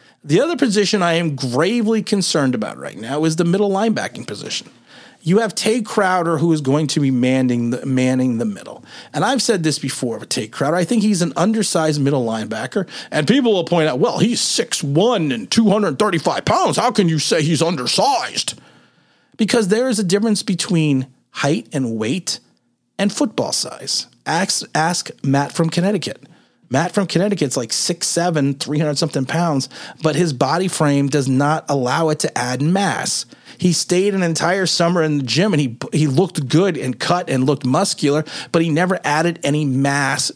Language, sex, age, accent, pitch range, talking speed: English, male, 40-59, American, 140-190 Hz, 175 wpm